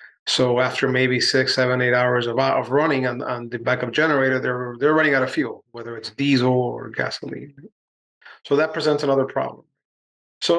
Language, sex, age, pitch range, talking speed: English, male, 30-49, 125-140 Hz, 180 wpm